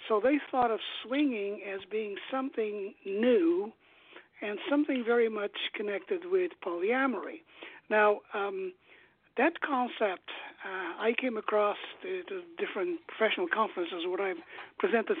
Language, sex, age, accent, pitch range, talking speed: English, male, 60-79, American, 215-325 Hz, 120 wpm